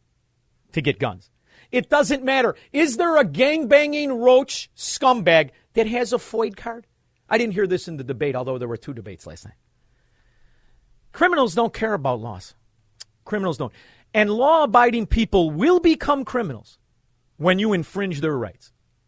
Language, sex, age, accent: English, male, 50-69, American